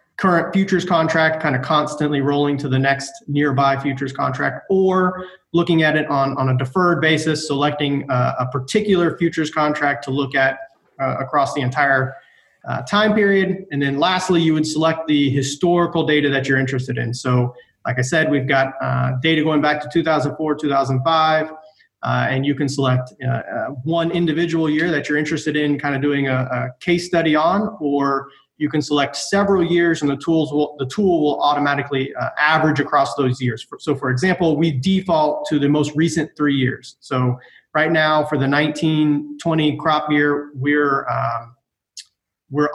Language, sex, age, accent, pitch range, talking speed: English, male, 30-49, American, 135-160 Hz, 180 wpm